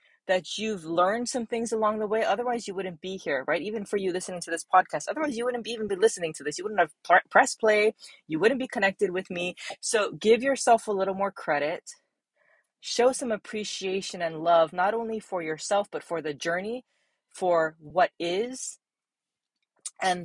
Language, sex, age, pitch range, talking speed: English, female, 30-49, 165-215 Hz, 190 wpm